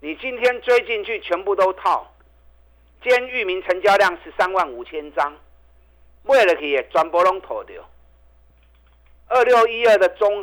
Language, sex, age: Chinese, male, 50-69